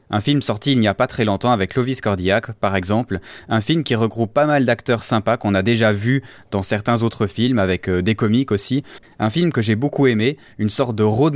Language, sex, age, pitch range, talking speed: French, male, 20-39, 105-130 Hz, 230 wpm